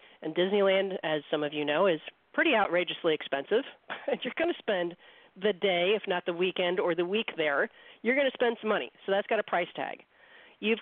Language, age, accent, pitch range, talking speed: English, 40-59, American, 170-220 Hz, 215 wpm